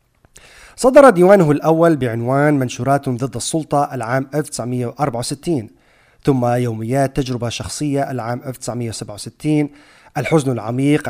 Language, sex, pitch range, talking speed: Arabic, male, 125-150 Hz, 90 wpm